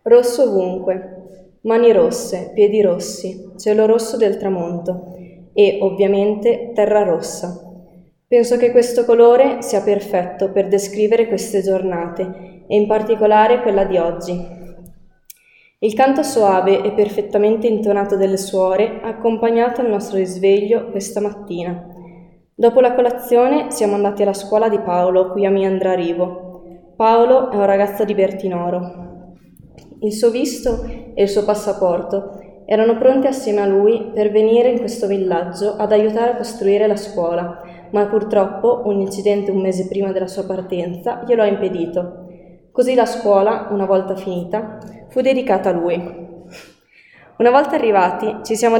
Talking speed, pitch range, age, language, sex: 140 wpm, 185-220 Hz, 20-39, English, female